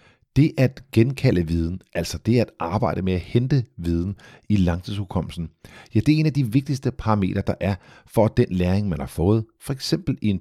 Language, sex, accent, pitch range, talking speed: Danish, male, native, 90-120 Hz, 195 wpm